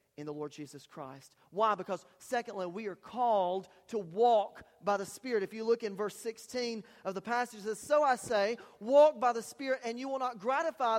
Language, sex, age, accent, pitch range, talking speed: English, male, 40-59, American, 205-275 Hz, 215 wpm